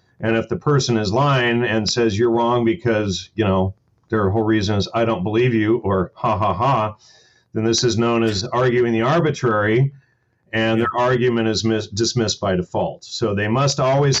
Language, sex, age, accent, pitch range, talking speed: English, male, 40-59, American, 110-130 Hz, 185 wpm